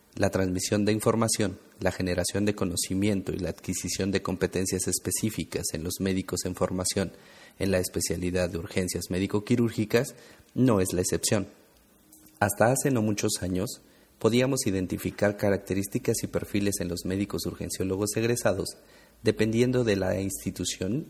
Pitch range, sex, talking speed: 90-110 Hz, male, 135 wpm